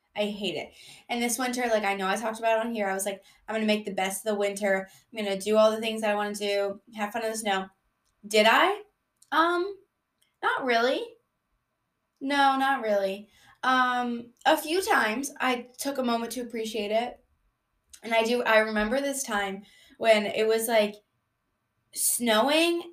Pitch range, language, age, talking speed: 205-265 Hz, English, 10-29, 195 wpm